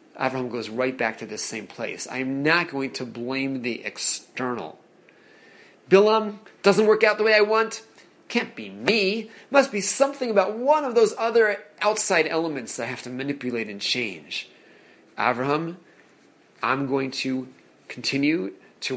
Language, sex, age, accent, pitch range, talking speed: English, male, 30-49, American, 135-190 Hz, 155 wpm